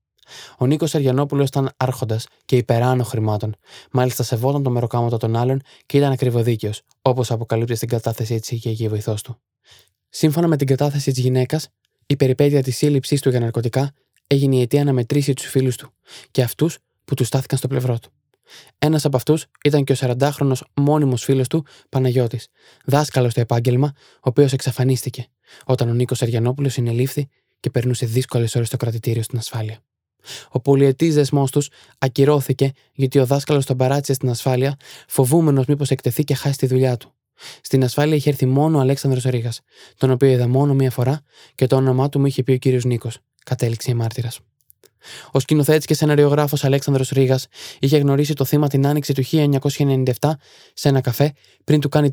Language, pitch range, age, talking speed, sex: Greek, 125-140 Hz, 20-39, 175 wpm, male